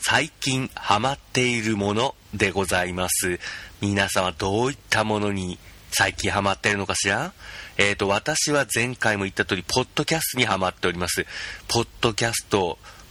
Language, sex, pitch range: Japanese, male, 95-130 Hz